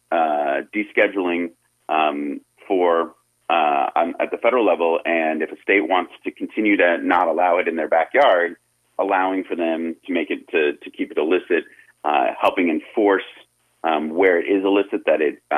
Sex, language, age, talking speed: male, English, 30-49, 175 wpm